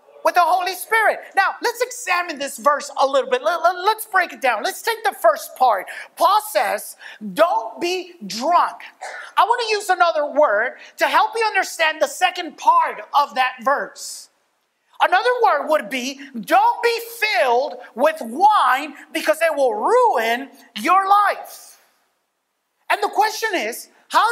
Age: 30-49